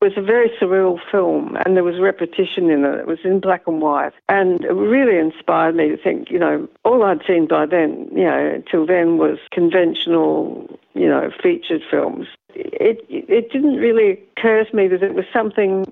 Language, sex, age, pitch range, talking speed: English, female, 60-79, 165-235 Hz, 200 wpm